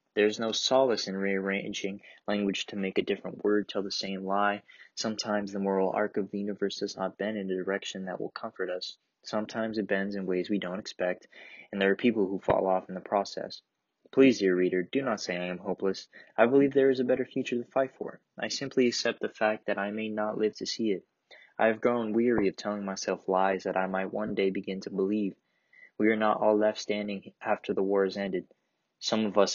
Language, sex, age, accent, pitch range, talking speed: English, male, 20-39, American, 95-110 Hz, 230 wpm